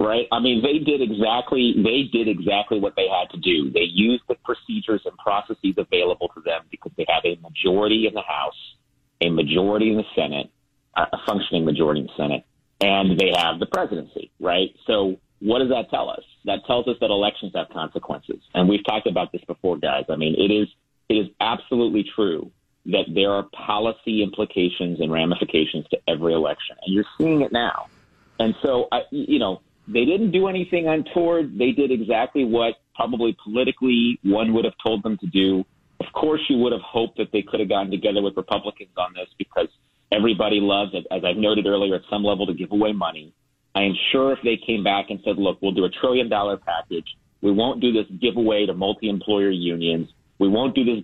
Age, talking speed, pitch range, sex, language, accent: 40-59, 205 wpm, 95-120 Hz, male, English, American